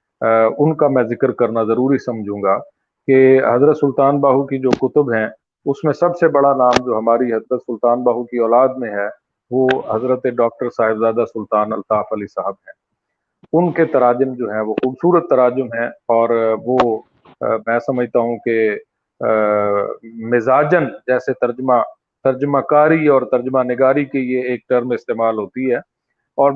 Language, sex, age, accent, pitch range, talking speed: English, male, 40-59, Indian, 125-155 Hz, 135 wpm